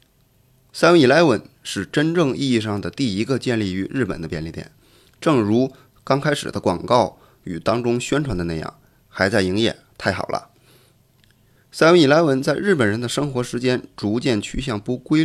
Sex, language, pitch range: male, Chinese, 95-135 Hz